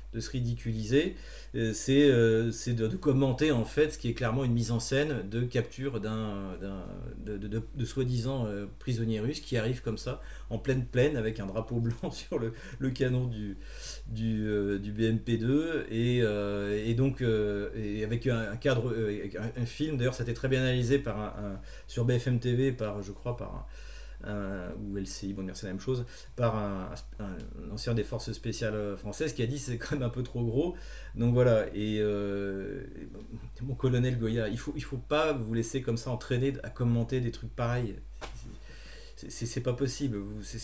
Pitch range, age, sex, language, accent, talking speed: 110-130 Hz, 40-59, male, French, French, 205 wpm